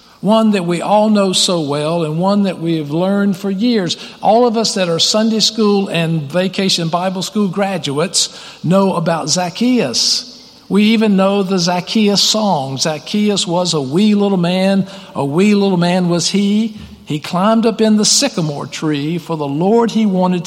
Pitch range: 165-215 Hz